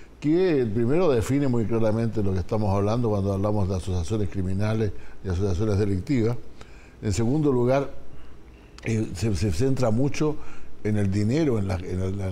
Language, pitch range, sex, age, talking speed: Spanish, 100-120 Hz, male, 60-79, 160 wpm